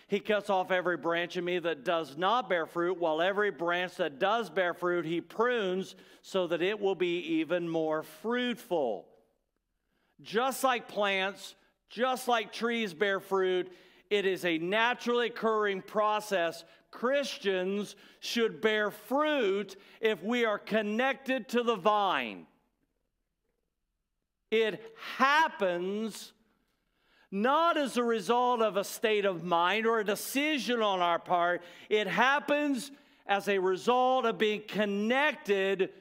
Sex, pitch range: male, 180-230 Hz